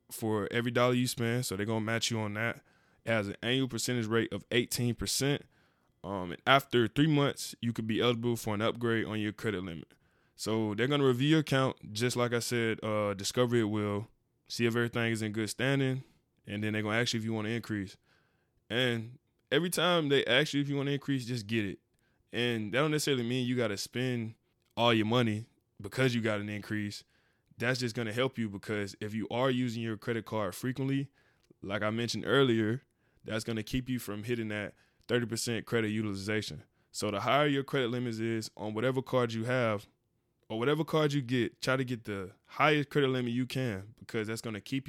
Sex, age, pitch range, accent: male, 10-29, 105-125 Hz, American